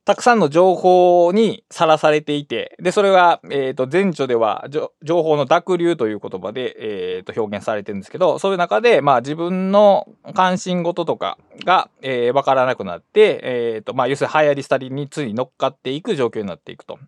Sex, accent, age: male, native, 20-39